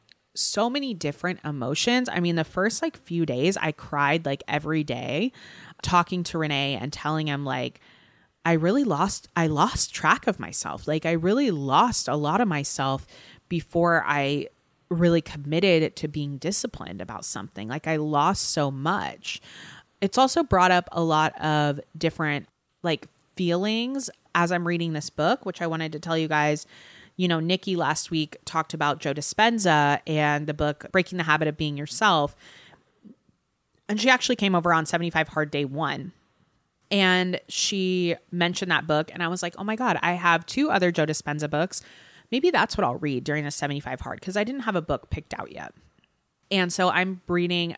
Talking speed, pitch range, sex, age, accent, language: 180 wpm, 150-185 Hz, female, 20-39, American, English